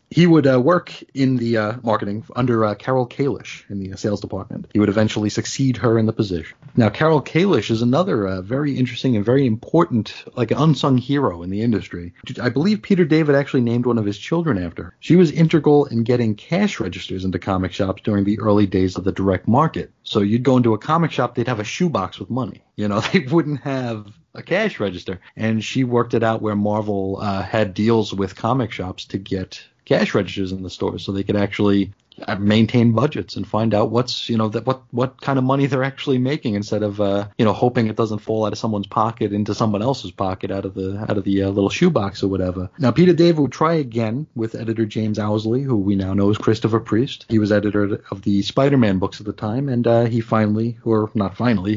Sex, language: male, English